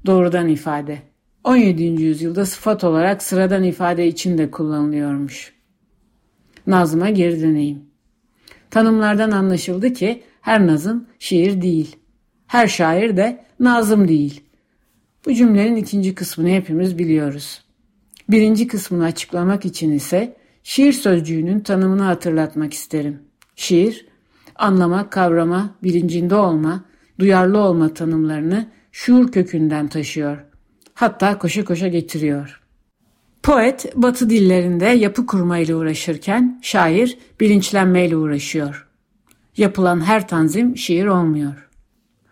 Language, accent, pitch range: Turkish, native, 165-210 Hz